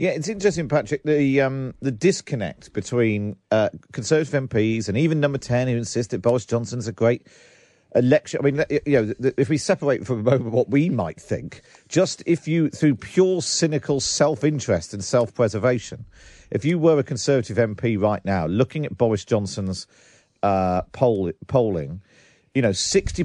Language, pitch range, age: English, 120-155 Hz, 50-69